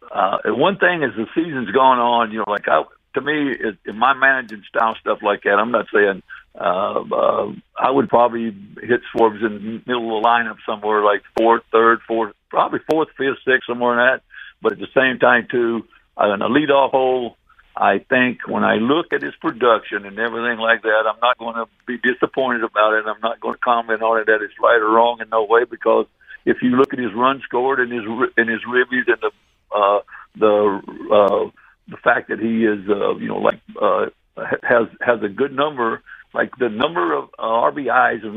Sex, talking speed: male, 215 wpm